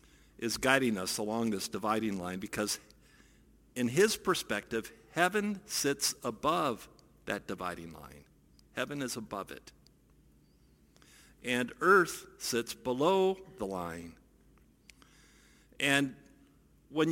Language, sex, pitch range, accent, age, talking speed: English, male, 100-155 Hz, American, 50-69, 100 wpm